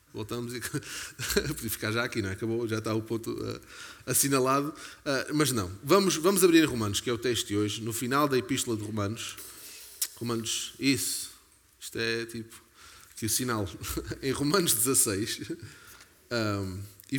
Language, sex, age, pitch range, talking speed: Portuguese, male, 20-39, 105-130 Hz, 155 wpm